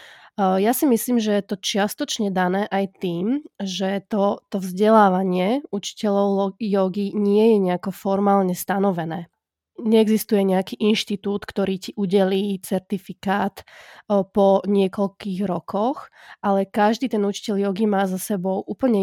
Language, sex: Slovak, female